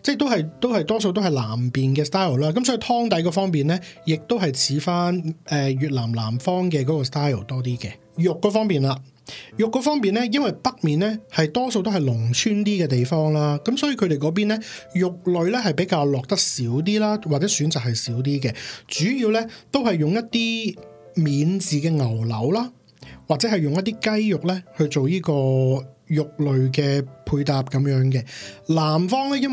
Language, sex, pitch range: Chinese, male, 140-205 Hz